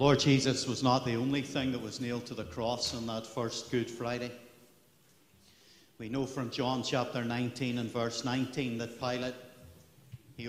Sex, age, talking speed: male, 50-69, 170 wpm